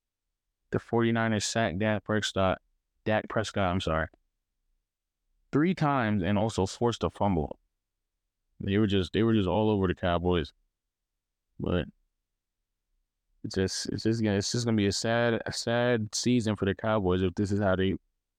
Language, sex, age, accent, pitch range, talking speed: English, male, 20-39, American, 90-110 Hz, 160 wpm